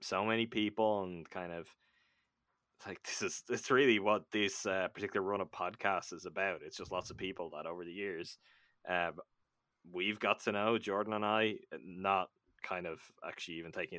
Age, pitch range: 10-29, 90-115 Hz